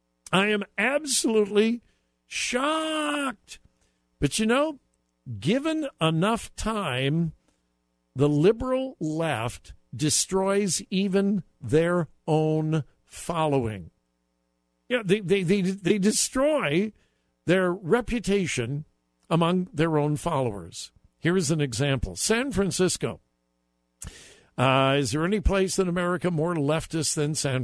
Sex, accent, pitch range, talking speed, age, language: male, American, 130-200 Hz, 100 wpm, 60-79, English